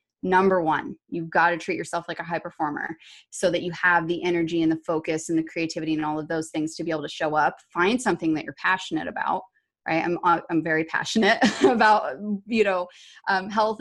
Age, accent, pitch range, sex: 20-39, American, 165-190 Hz, female